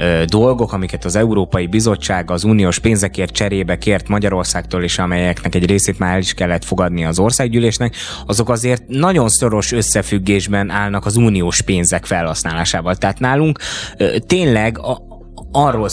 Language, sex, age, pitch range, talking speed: Hungarian, male, 20-39, 95-120 Hz, 135 wpm